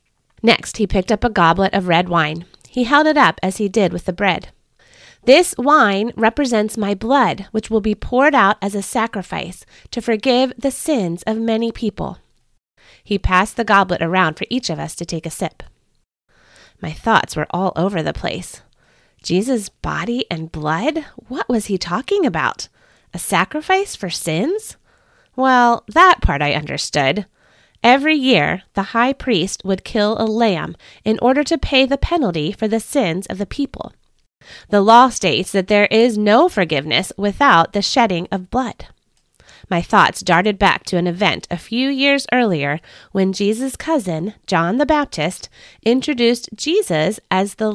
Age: 30-49